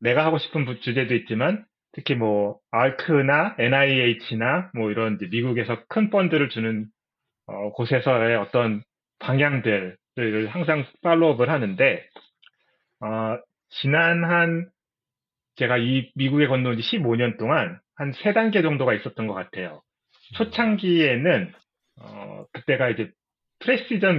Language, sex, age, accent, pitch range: Korean, male, 30-49, native, 110-150 Hz